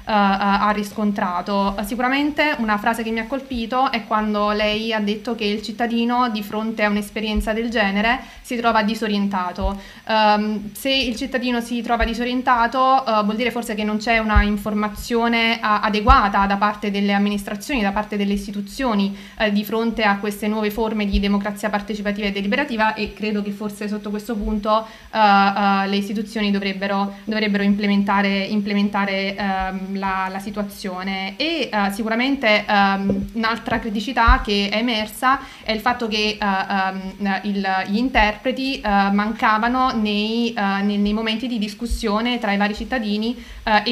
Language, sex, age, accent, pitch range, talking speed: Italian, female, 20-39, native, 200-230 Hz, 150 wpm